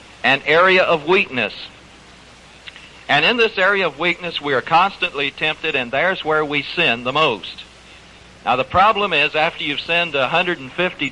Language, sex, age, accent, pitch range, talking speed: English, male, 60-79, American, 150-190 Hz, 155 wpm